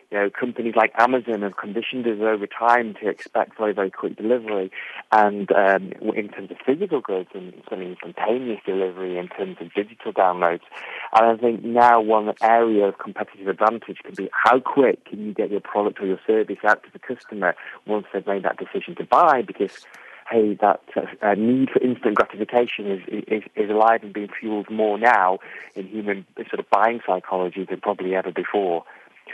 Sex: male